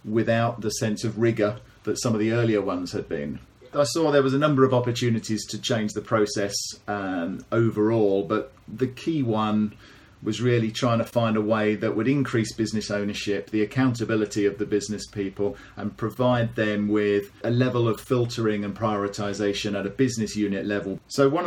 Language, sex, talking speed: English, male, 185 wpm